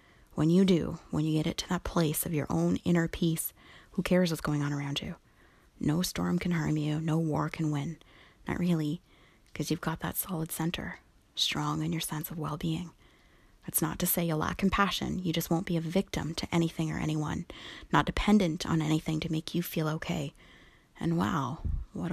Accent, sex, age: American, female, 30-49